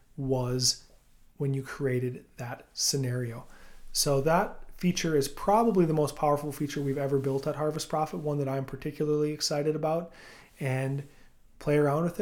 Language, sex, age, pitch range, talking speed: English, male, 30-49, 130-150 Hz, 150 wpm